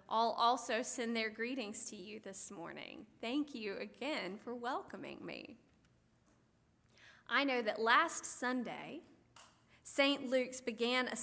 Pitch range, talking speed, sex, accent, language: 220-280 Hz, 130 wpm, female, American, English